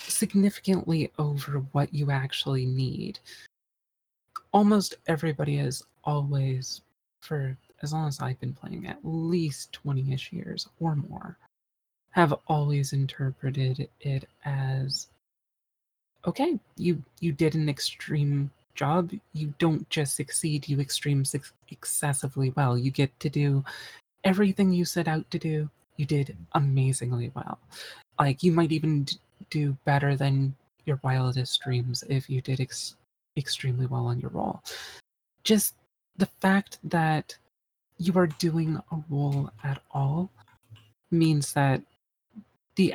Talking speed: 125 wpm